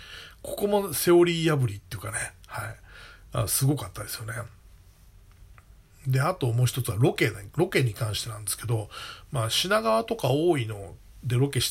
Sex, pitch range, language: male, 110-175 Hz, Japanese